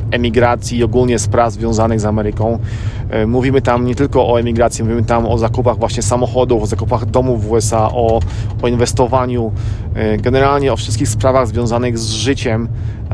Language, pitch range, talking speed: Polish, 110-120 Hz, 155 wpm